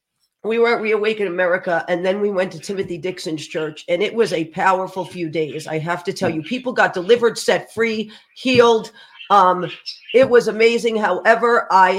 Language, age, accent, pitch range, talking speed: English, 40-59, American, 180-230 Hz, 185 wpm